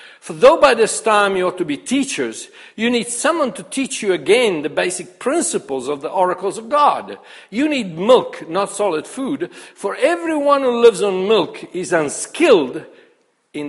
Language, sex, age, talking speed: English, male, 60-79, 175 wpm